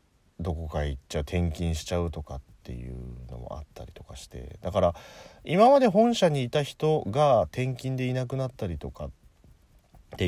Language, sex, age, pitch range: Japanese, male, 40-59, 80-130 Hz